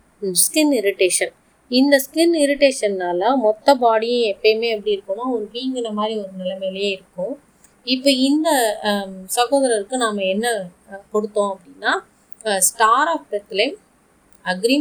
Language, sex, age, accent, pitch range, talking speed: Tamil, female, 20-39, native, 205-275 Hz, 110 wpm